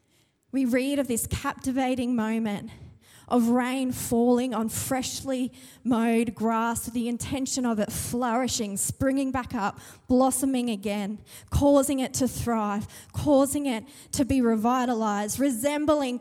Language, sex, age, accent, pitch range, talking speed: English, female, 20-39, Australian, 225-270 Hz, 125 wpm